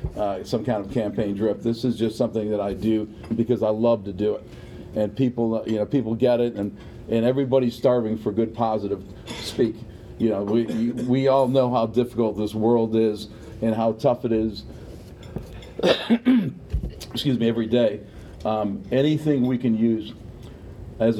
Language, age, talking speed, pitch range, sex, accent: English, 50-69, 170 wpm, 105-120 Hz, male, American